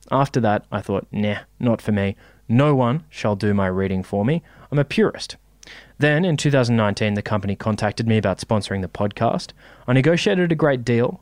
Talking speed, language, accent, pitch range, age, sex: 185 wpm, English, Australian, 105-140 Hz, 20-39, male